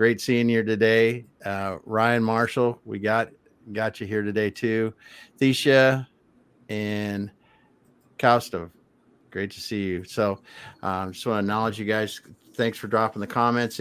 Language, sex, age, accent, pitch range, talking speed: English, male, 50-69, American, 105-120 Hz, 150 wpm